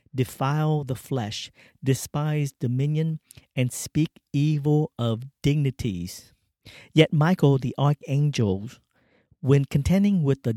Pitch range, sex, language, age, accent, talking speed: 115-145 Hz, male, English, 50-69, American, 100 wpm